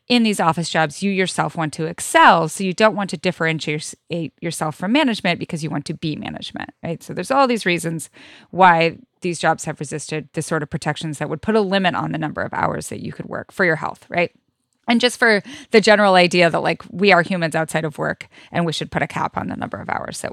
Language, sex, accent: English, female, American